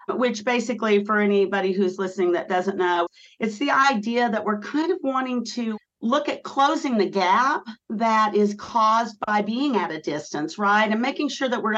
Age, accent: 50-69, American